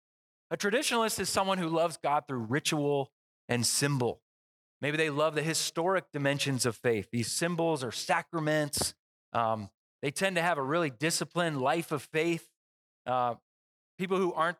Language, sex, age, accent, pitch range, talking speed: English, male, 30-49, American, 140-190 Hz, 155 wpm